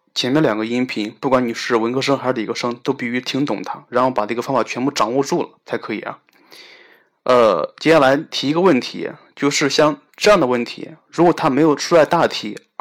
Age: 20-39